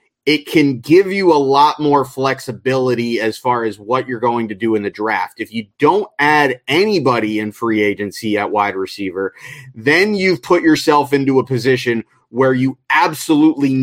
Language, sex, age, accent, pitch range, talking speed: English, male, 30-49, American, 125-150 Hz, 175 wpm